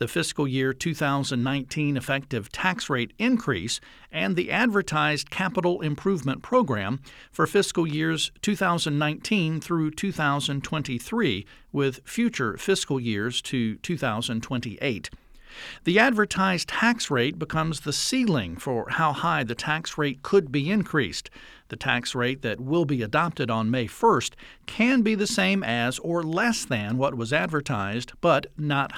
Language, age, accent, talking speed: English, 50-69, American, 135 wpm